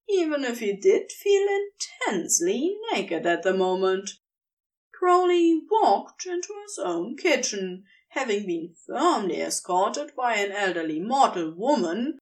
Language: English